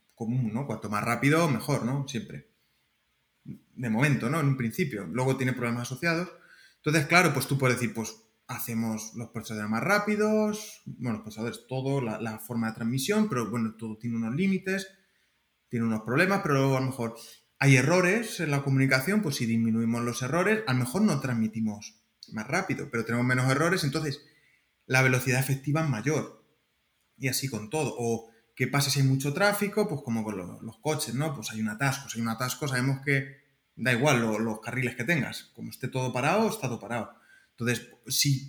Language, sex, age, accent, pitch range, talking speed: Spanish, male, 20-39, Spanish, 120-170 Hz, 195 wpm